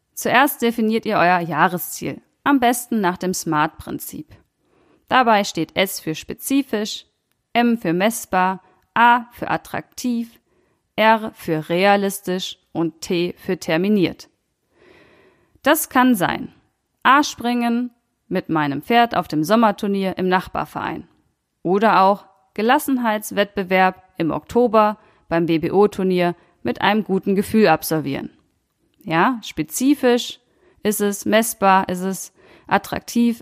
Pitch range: 175-225 Hz